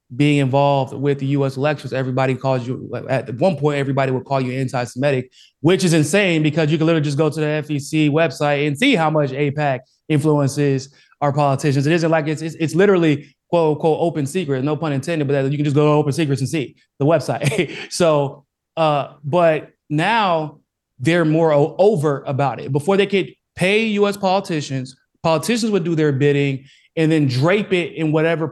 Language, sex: English, male